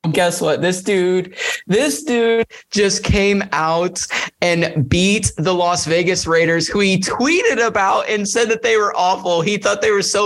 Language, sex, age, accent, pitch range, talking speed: English, male, 30-49, American, 165-200 Hz, 175 wpm